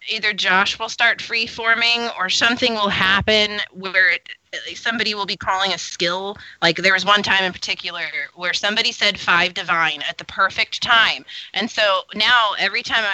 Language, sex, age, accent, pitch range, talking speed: English, female, 20-39, American, 190-245 Hz, 175 wpm